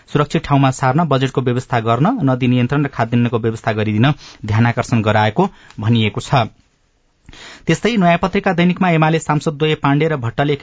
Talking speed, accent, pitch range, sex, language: 120 wpm, Indian, 120-140 Hz, male, English